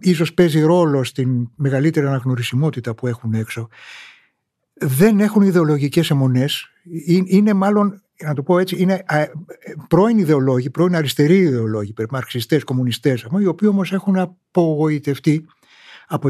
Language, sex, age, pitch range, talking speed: Greek, male, 60-79, 130-180 Hz, 135 wpm